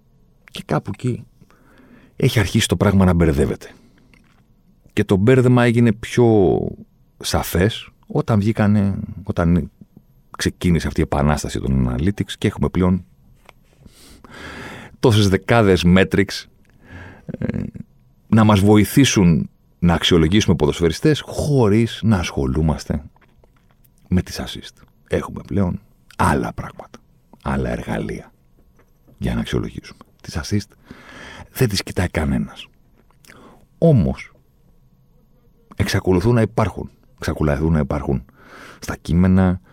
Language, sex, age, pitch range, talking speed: Greek, male, 40-59, 80-105 Hz, 100 wpm